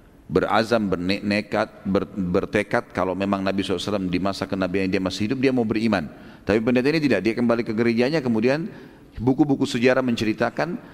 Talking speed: 165 wpm